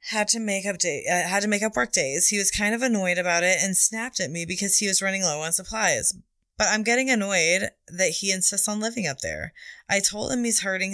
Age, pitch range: 20-39, 165-195 Hz